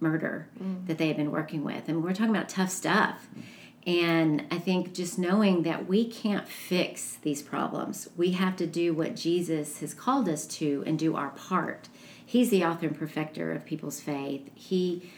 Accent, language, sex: American, English, female